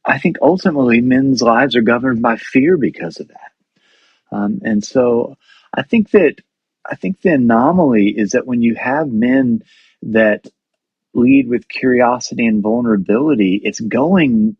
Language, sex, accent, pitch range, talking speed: English, male, American, 110-135 Hz, 150 wpm